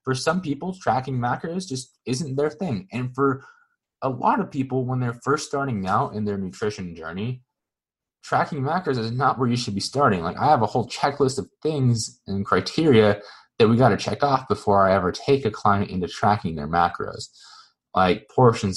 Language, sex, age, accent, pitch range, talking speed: English, male, 20-39, American, 95-130 Hz, 195 wpm